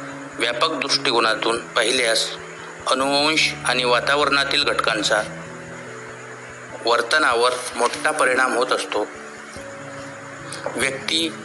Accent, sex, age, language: native, male, 50-69, Marathi